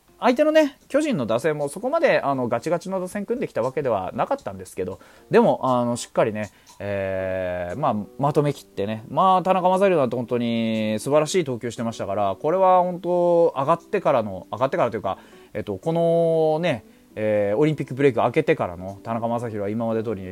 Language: Japanese